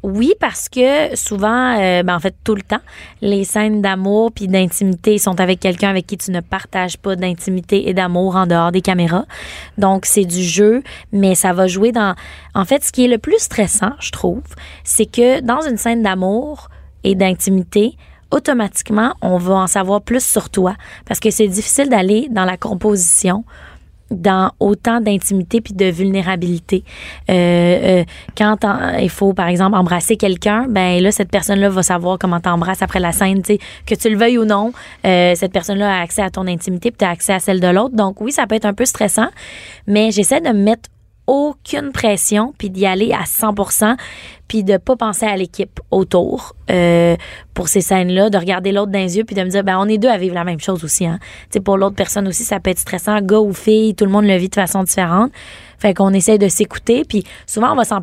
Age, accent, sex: 20-39, Canadian, female